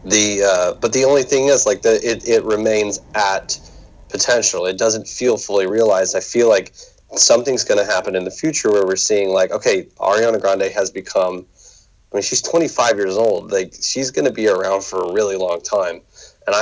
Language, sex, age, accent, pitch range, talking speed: English, male, 30-49, American, 95-120 Hz, 195 wpm